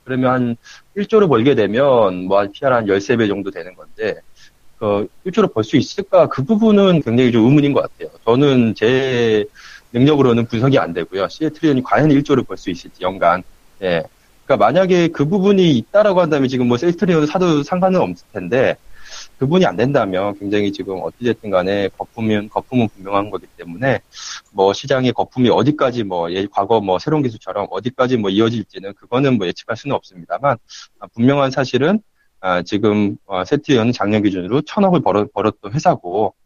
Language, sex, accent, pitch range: Korean, male, native, 100-150 Hz